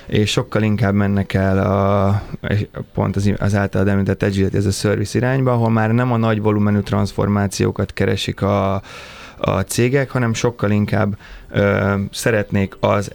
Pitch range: 100-110 Hz